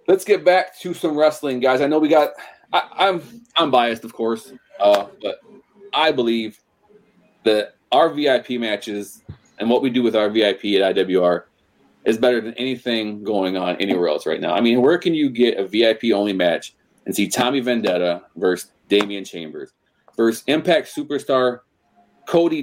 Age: 30-49